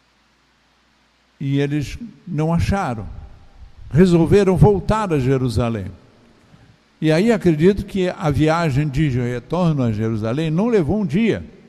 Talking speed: 115 wpm